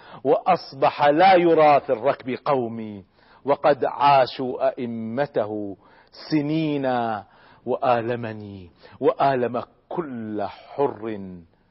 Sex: male